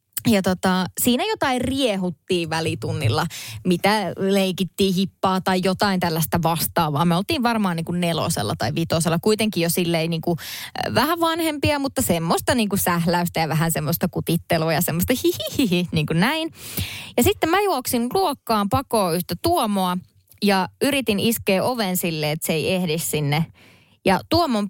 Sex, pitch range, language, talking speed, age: female, 170-220 Hz, Finnish, 140 wpm, 20-39